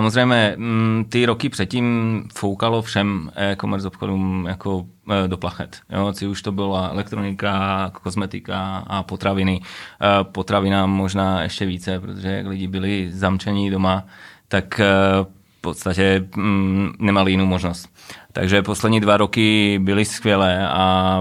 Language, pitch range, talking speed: Czech, 95-105 Hz, 120 wpm